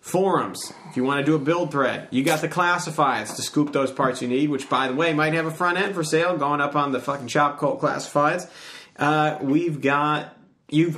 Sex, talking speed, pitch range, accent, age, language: male, 235 wpm, 135-165 Hz, American, 30-49, English